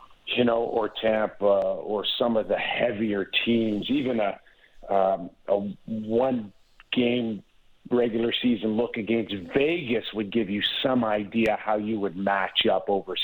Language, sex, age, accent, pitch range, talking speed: English, male, 50-69, American, 100-120 Hz, 145 wpm